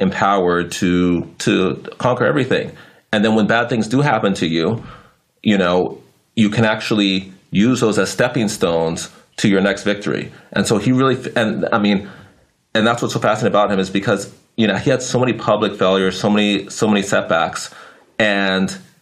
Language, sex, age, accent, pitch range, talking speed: English, male, 30-49, American, 90-110 Hz, 185 wpm